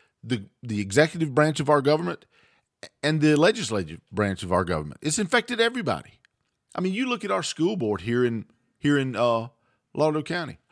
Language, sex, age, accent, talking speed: English, male, 40-59, American, 180 wpm